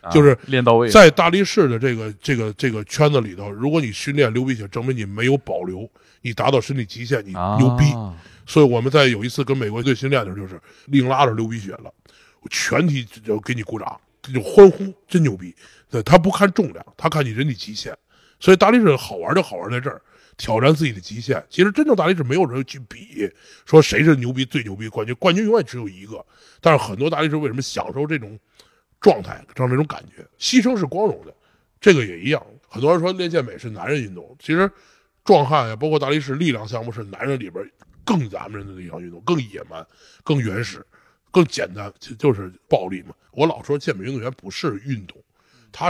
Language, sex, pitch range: Chinese, male, 110-155 Hz